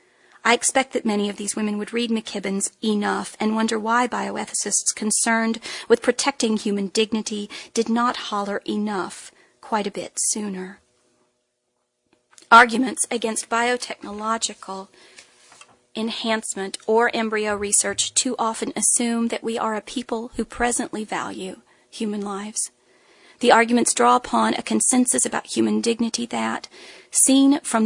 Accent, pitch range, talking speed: American, 195-240 Hz, 130 wpm